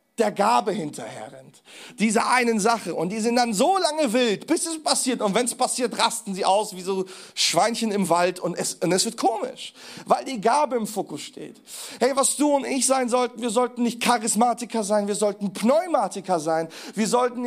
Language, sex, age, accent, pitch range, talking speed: German, male, 40-59, German, 180-245 Hz, 200 wpm